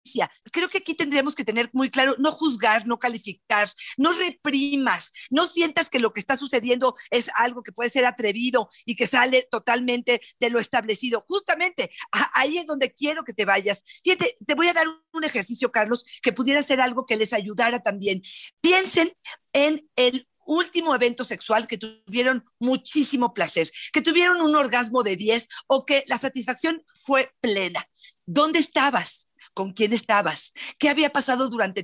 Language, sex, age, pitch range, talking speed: Spanish, female, 40-59, 230-290 Hz, 170 wpm